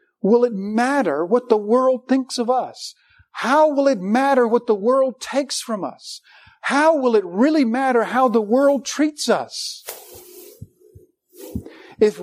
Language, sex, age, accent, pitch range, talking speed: English, male, 50-69, American, 195-265 Hz, 145 wpm